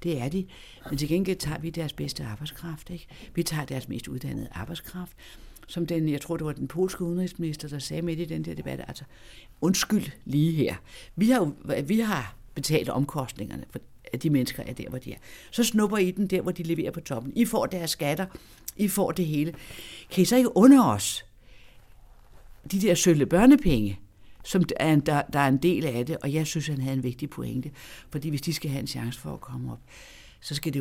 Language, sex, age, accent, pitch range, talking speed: Danish, female, 60-79, native, 130-170 Hz, 220 wpm